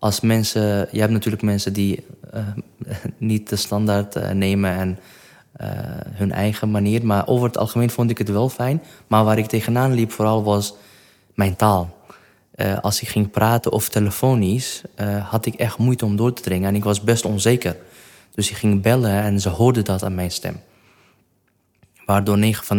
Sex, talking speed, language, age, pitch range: male, 185 wpm, Dutch, 20-39, 100-115 Hz